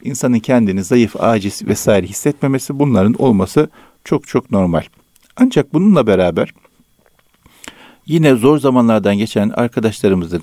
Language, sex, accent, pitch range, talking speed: Turkish, male, native, 95-130 Hz, 110 wpm